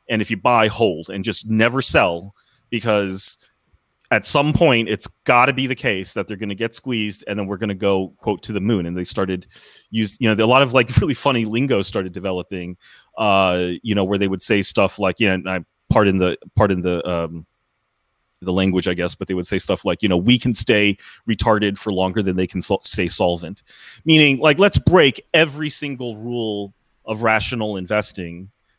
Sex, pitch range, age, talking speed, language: male, 95-125 Hz, 30-49, 215 wpm, English